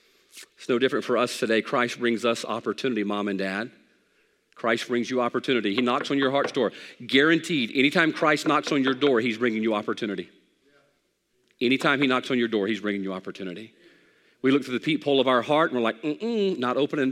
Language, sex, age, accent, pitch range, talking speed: English, male, 40-59, American, 125-165 Hz, 205 wpm